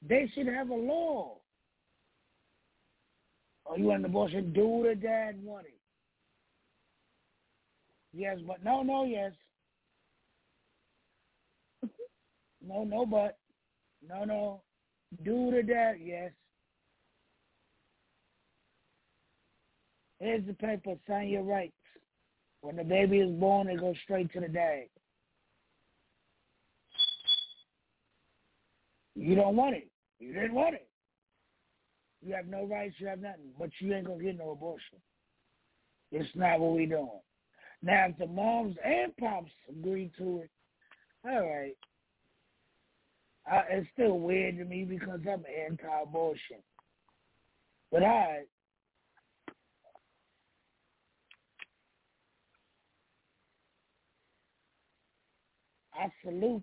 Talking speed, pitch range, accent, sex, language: 105 wpm, 175-220 Hz, American, male, English